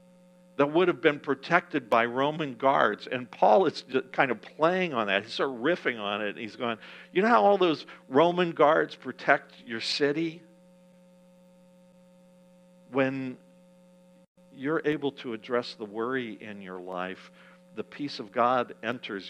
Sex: male